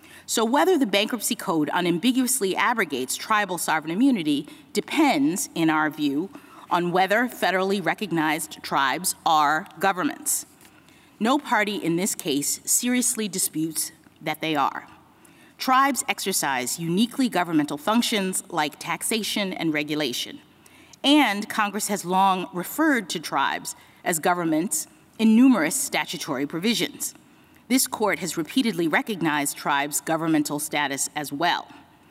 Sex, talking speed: female, 120 wpm